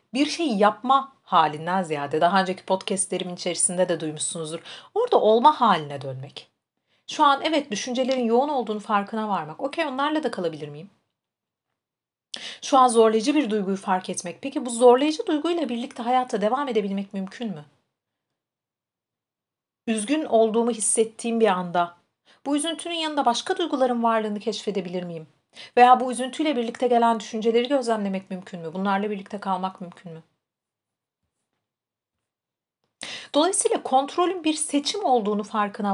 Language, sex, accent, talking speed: Turkish, female, native, 130 wpm